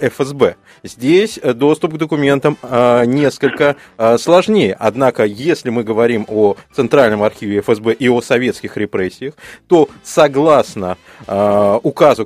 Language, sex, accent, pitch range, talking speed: Russian, male, native, 115-160 Hz, 110 wpm